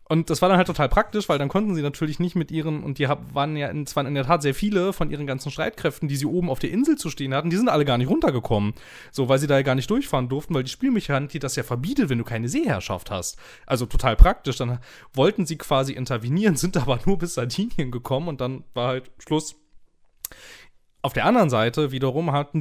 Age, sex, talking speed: 30-49, male, 240 wpm